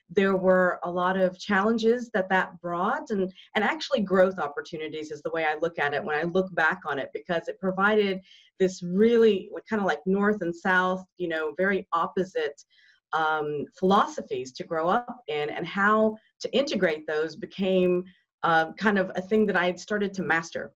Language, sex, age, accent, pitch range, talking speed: English, female, 40-59, American, 170-215 Hz, 190 wpm